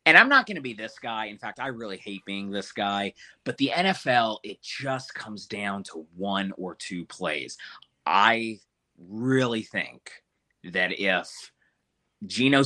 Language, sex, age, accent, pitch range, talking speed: English, male, 30-49, American, 100-135 Hz, 160 wpm